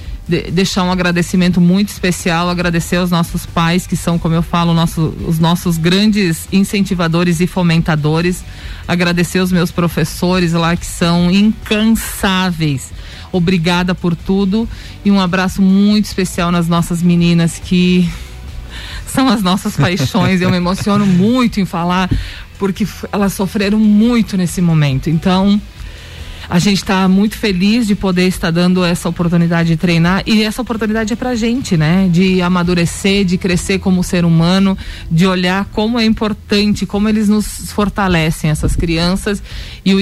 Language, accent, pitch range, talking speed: Portuguese, Brazilian, 165-195 Hz, 150 wpm